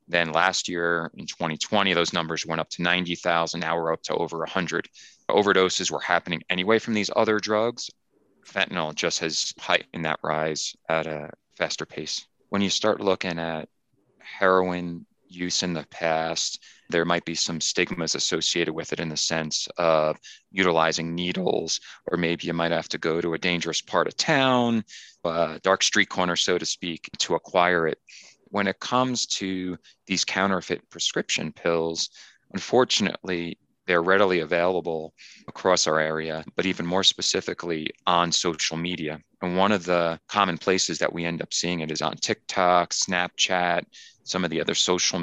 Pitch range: 85-95 Hz